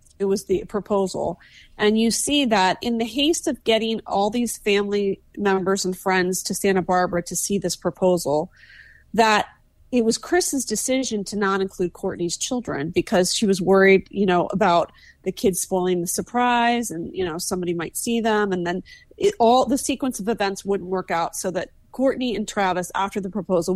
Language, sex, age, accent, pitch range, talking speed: English, female, 30-49, American, 180-225 Hz, 185 wpm